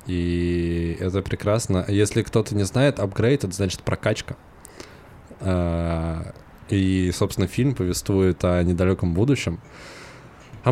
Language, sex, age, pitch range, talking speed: Russian, male, 20-39, 85-100 Hz, 105 wpm